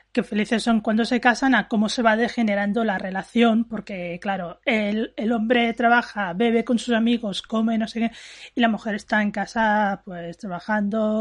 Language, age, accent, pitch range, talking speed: Spanish, 30-49, Spanish, 225-290 Hz, 185 wpm